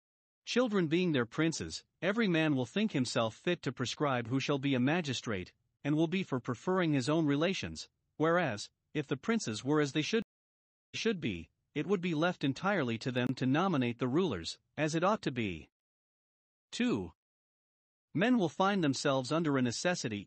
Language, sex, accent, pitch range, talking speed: English, male, American, 125-170 Hz, 170 wpm